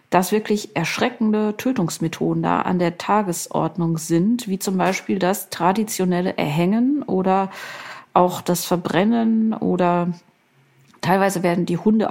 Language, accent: German, German